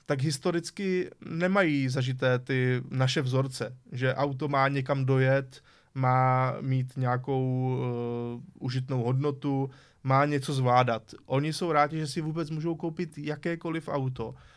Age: 20-39